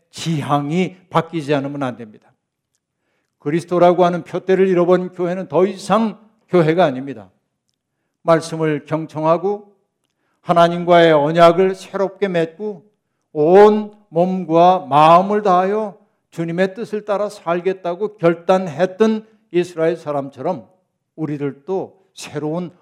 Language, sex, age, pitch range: Korean, male, 60-79, 135-175 Hz